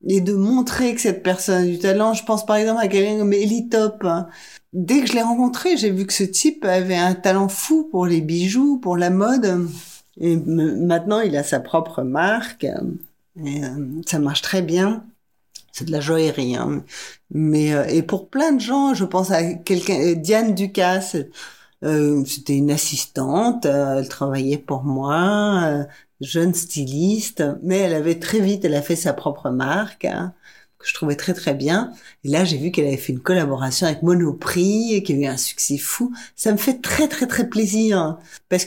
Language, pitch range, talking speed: French, 165-210 Hz, 185 wpm